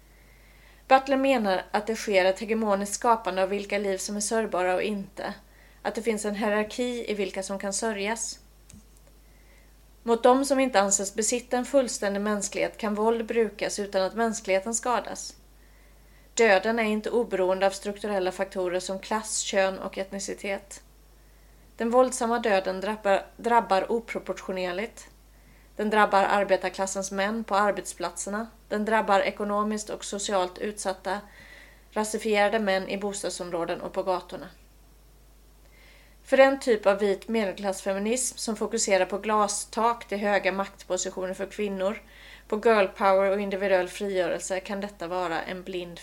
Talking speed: 135 wpm